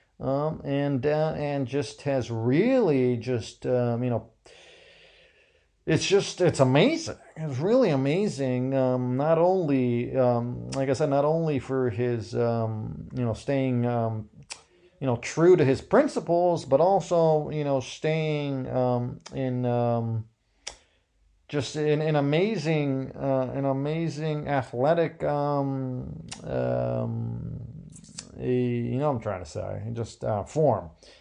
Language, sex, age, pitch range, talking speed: English, male, 40-59, 120-150 Hz, 135 wpm